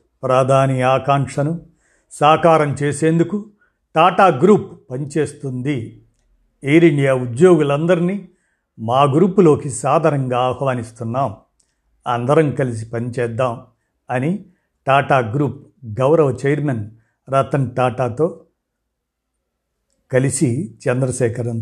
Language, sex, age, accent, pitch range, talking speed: Telugu, male, 50-69, native, 125-155 Hz, 70 wpm